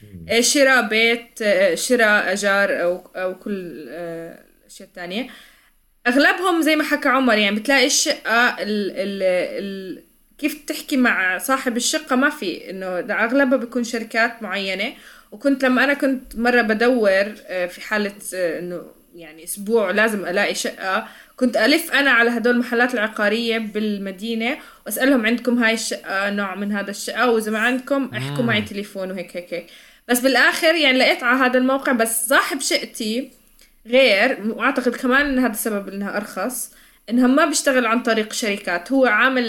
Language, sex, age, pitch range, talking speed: Arabic, female, 20-39, 200-260 Hz, 145 wpm